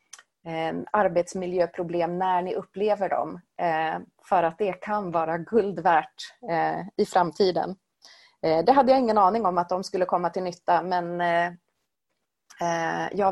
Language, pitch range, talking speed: Swedish, 170-210 Hz, 120 wpm